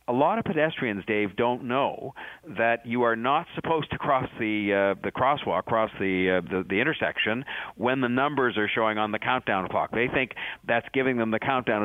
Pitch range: 100-125 Hz